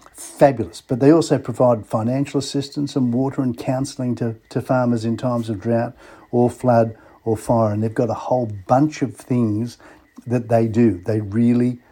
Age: 50-69